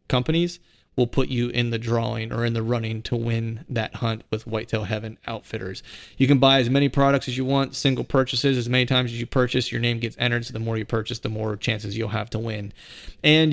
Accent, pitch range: American, 115-130 Hz